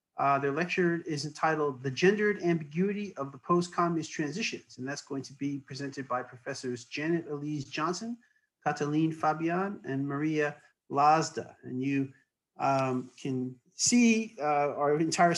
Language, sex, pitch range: English, male, 150-190 Hz